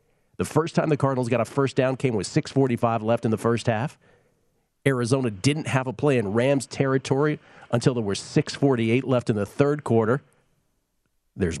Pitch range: 110-140 Hz